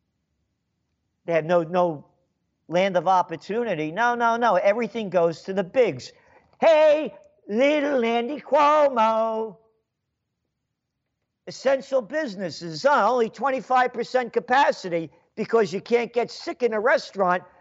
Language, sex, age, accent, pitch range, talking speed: English, male, 50-69, American, 180-245 Hz, 110 wpm